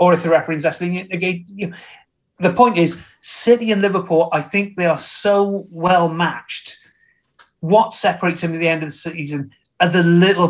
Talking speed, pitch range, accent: 185 wpm, 160-185 Hz, British